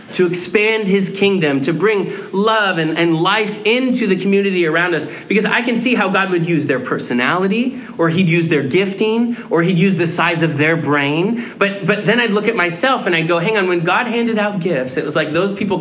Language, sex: English, male